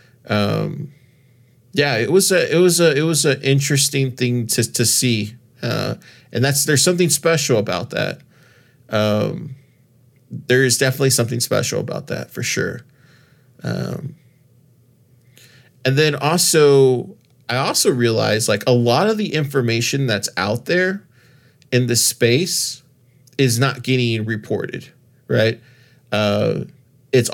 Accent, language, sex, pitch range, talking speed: American, English, male, 115-135 Hz, 130 wpm